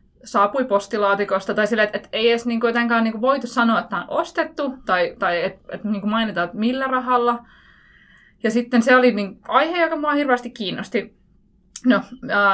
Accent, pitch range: native, 190-240 Hz